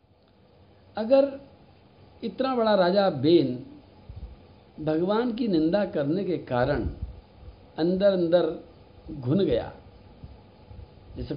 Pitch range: 125-185 Hz